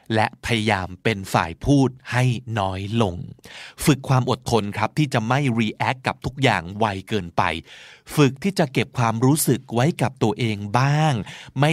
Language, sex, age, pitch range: Thai, male, 20-39, 115-155 Hz